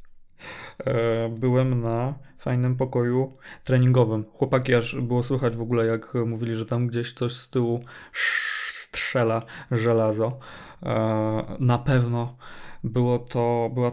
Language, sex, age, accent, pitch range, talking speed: Polish, male, 20-39, native, 115-135 Hz, 105 wpm